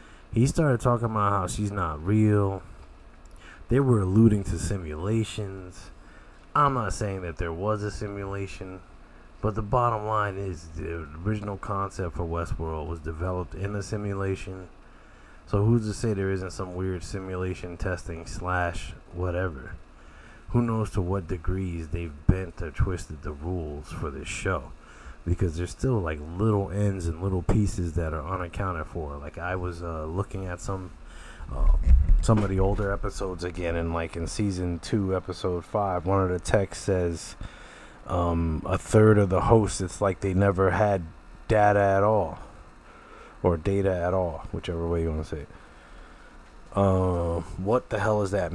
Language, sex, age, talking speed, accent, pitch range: English, male, 20-39, 165 wpm, American, 85-100 Hz